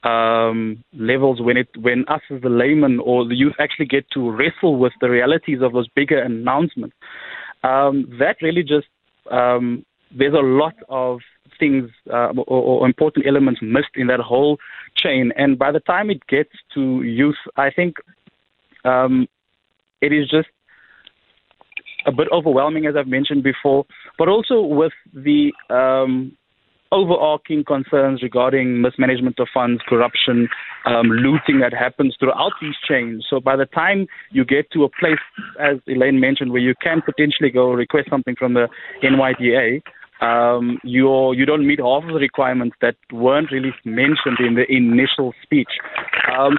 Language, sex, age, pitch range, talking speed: English, male, 20-39, 125-145 Hz, 160 wpm